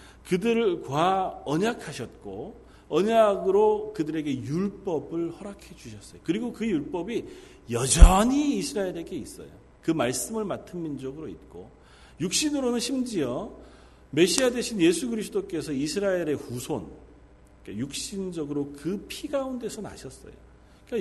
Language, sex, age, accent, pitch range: Korean, male, 40-59, native, 155-245 Hz